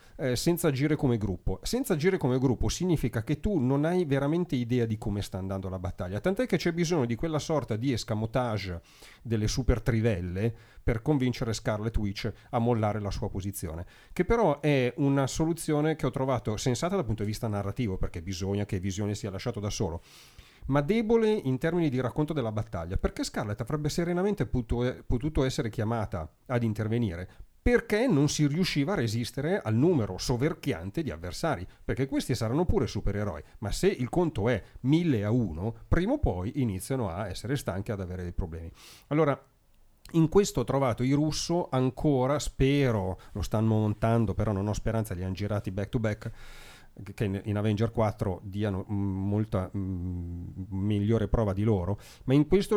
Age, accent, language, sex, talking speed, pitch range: 40-59, native, Italian, male, 175 wpm, 100-140 Hz